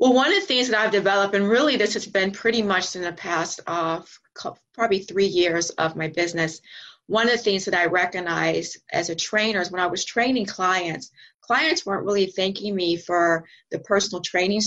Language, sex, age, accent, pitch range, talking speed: English, female, 30-49, American, 175-205 Hz, 210 wpm